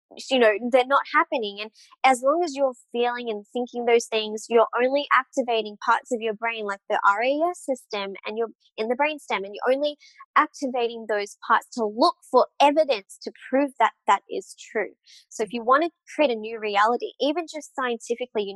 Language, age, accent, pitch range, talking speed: English, 20-39, Australian, 215-280 Hz, 195 wpm